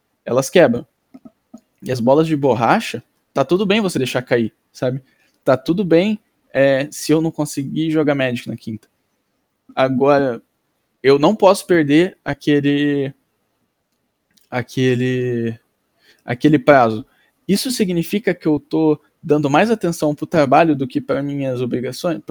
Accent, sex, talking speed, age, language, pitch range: Brazilian, male, 135 wpm, 10-29, Portuguese, 130-175 Hz